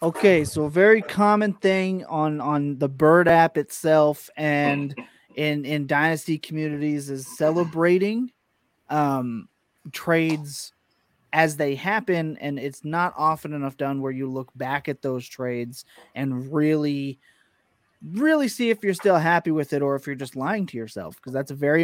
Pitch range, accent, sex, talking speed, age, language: 140-160 Hz, American, male, 160 wpm, 30-49, English